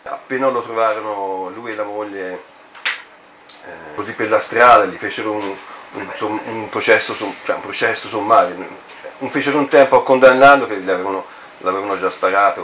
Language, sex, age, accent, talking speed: Italian, male, 40-59, native, 150 wpm